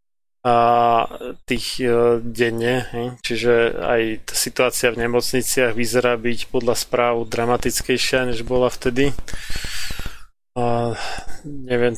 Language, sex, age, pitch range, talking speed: Slovak, male, 20-39, 115-130 Hz, 100 wpm